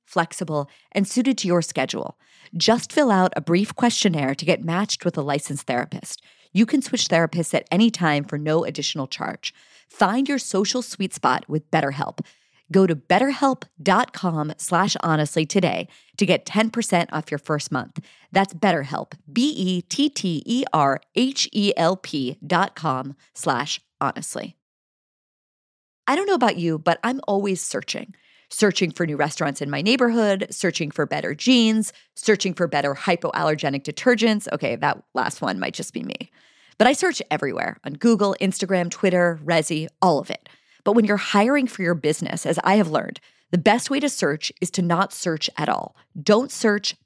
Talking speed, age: 155 wpm, 40-59